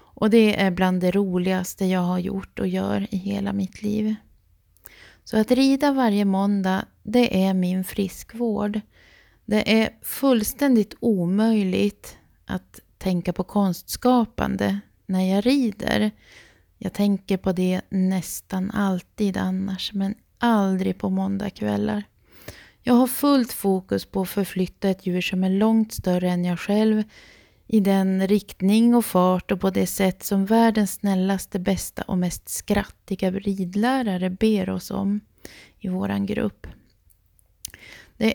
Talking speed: 135 wpm